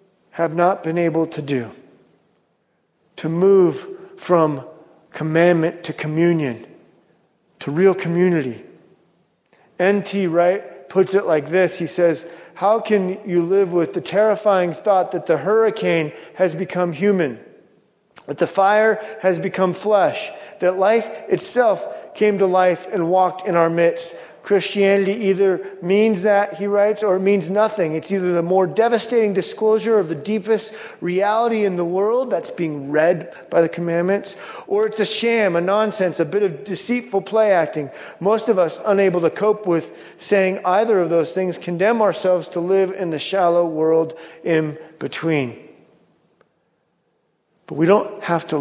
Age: 40-59